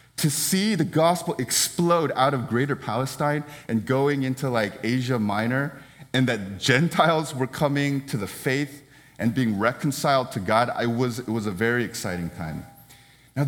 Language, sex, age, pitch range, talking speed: English, male, 30-49, 105-135 Hz, 160 wpm